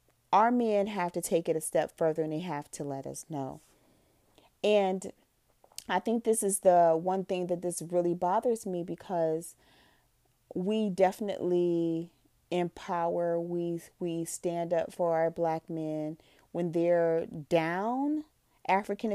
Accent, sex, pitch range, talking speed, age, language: American, female, 170-205 Hz, 140 wpm, 40-59, English